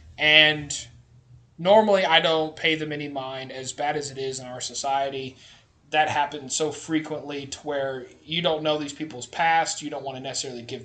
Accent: American